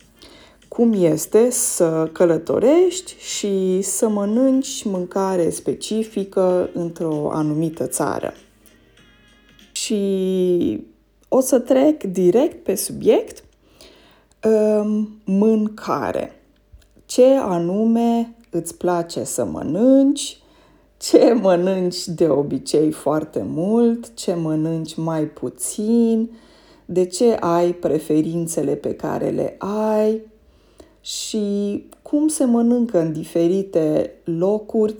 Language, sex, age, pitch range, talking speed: Romanian, female, 20-39, 165-230 Hz, 85 wpm